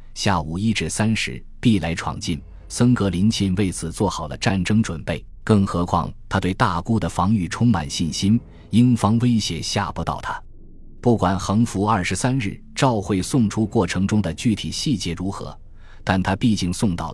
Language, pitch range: Chinese, 85-115 Hz